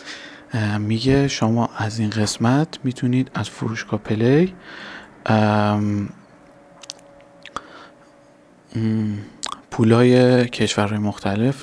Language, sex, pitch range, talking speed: Persian, male, 110-135 Hz, 65 wpm